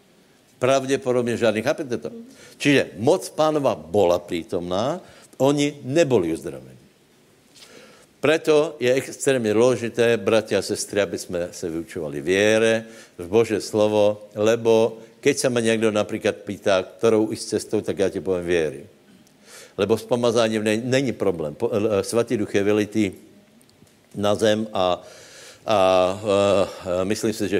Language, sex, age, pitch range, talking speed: Slovak, male, 70-89, 100-120 Hz, 130 wpm